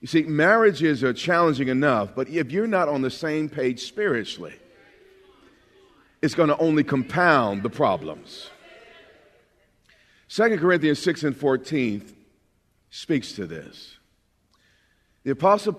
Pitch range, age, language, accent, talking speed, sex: 135-185 Hz, 50-69, English, American, 120 wpm, male